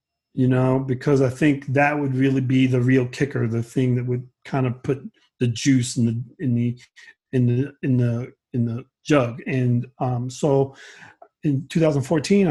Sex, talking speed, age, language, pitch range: male, 195 wpm, 40-59, English, 125-140 Hz